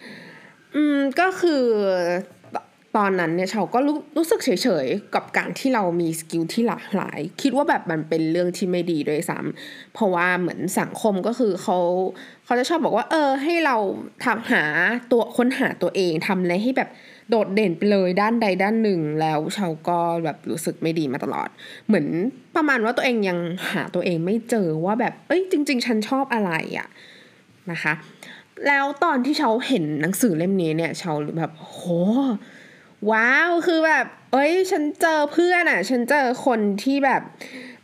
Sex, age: female, 20-39